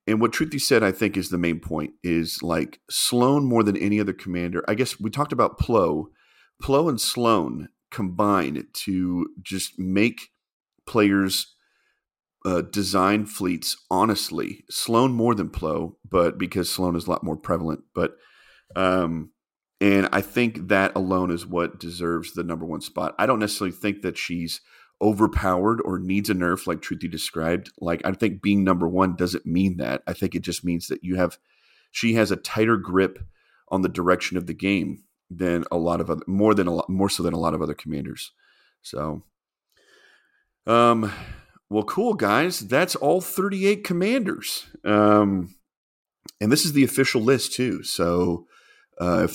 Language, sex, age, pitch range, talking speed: English, male, 40-59, 90-110 Hz, 170 wpm